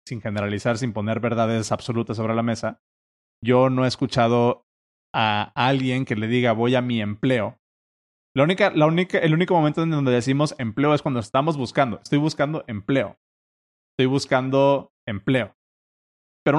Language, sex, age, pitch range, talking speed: Spanish, male, 30-49, 120-160 Hz, 145 wpm